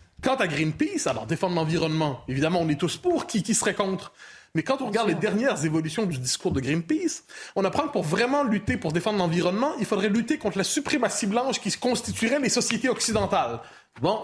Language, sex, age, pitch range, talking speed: French, male, 30-49, 160-245 Hz, 205 wpm